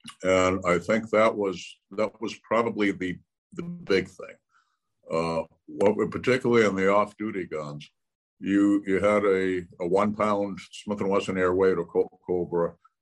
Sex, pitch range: male, 85-105 Hz